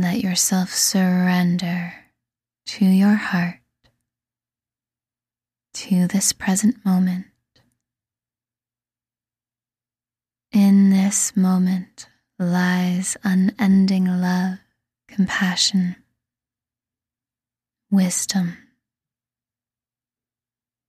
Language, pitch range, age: English, 120-190 Hz, 10-29